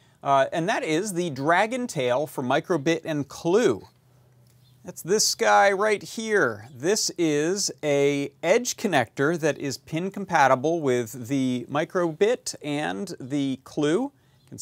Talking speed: 145 wpm